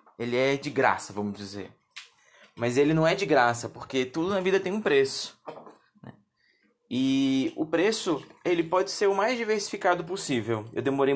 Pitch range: 135-190 Hz